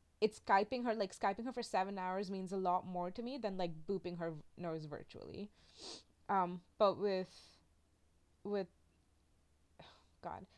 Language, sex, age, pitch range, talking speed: English, female, 20-39, 170-205 Hz, 145 wpm